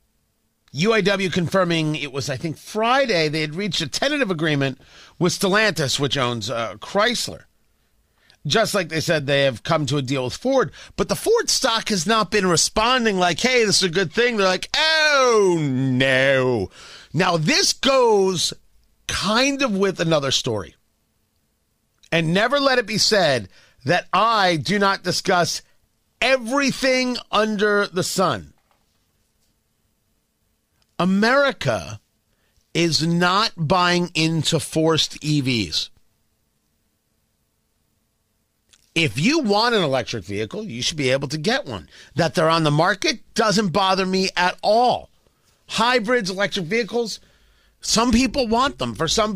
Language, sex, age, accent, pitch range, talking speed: English, male, 40-59, American, 145-225 Hz, 135 wpm